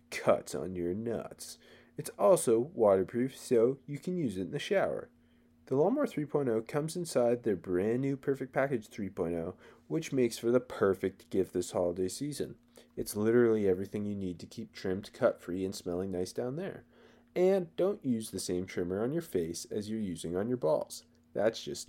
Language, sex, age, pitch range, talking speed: English, male, 20-39, 95-135 Hz, 185 wpm